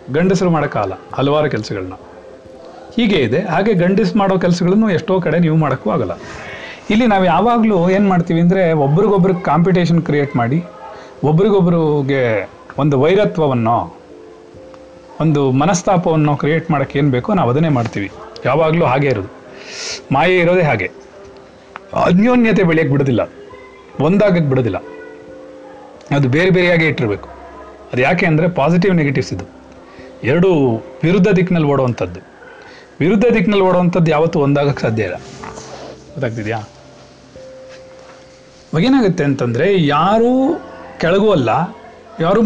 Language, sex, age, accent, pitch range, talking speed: Kannada, male, 40-59, native, 130-190 Hz, 105 wpm